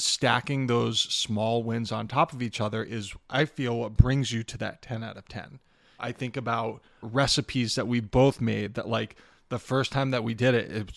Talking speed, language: 220 wpm, English